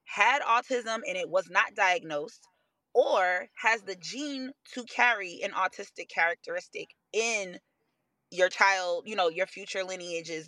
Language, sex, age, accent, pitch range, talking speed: English, female, 20-39, American, 180-250 Hz, 135 wpm